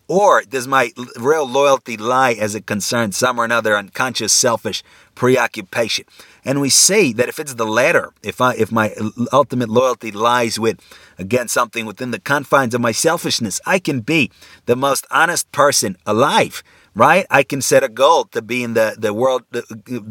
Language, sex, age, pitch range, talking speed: English, male, 30-49, 110-135 Hz, 175 wpm